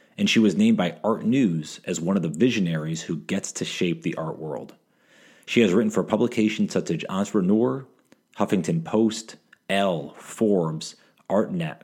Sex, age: male, 30-49